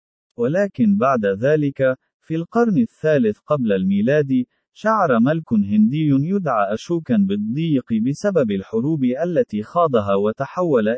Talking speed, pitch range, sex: 105 wpm, 125-205 Hz, male